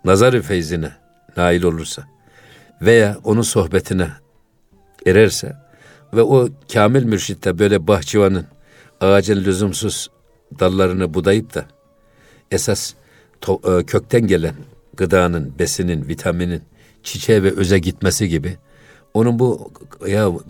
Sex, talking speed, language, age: male, 100 wpm, Turkish, 60-79